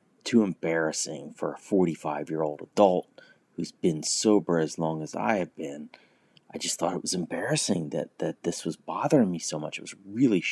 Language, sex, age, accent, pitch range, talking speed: English, male, 30-49, American, 80-95 Hz, 185 wpm